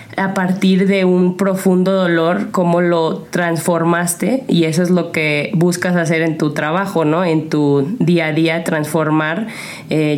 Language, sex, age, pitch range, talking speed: Spanish, female, 20-39, 165-190 Hz, 160 wpm